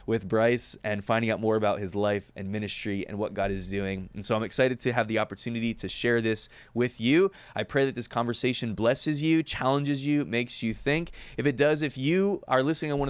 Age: 20-39